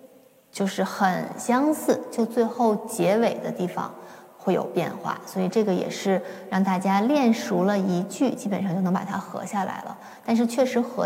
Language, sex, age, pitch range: Chinese, female, 20-39, 195-250 Hz